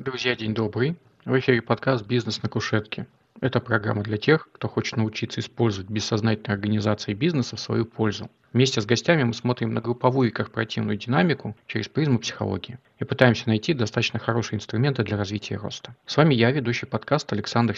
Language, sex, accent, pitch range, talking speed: Russian, male, native, 110-130 Hz, 170 wpm